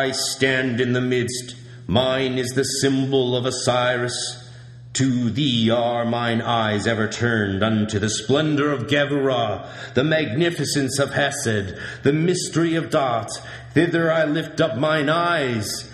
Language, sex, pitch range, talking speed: English, male, 120-150 Hz, 140 wpm